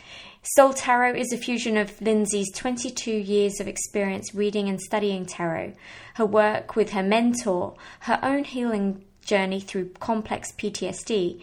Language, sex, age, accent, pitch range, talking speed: English, female, 20-39, British, 195-230 Hz, 140 wpm